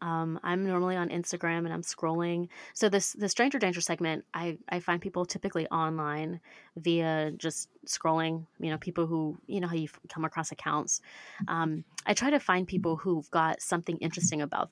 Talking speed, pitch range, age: 185 wpm, 160-185 Hz, 20-39